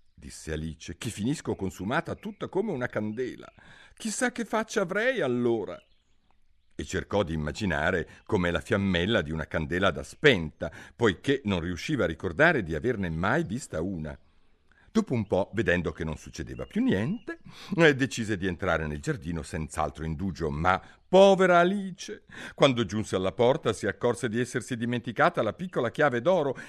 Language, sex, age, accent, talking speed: Italian, male, 50-69, native, 155 wpm